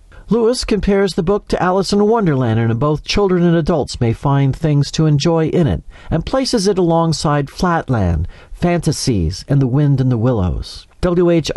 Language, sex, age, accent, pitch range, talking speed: English, male, 50-69, American, 125-180 Hz, 175 wpm